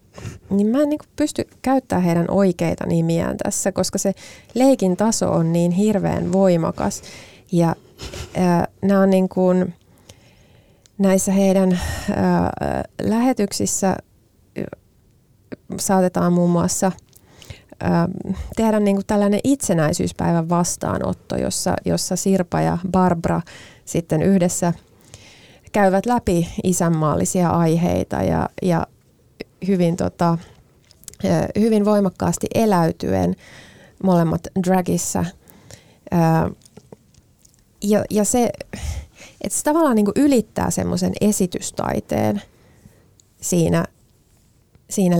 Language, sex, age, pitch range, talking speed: Finnish, female, 30-49, 165-195 Hz, 90 wpm